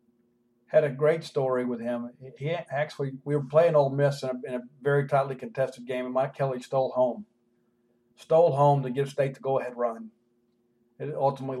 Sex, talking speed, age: male, 180 wpm, 40-59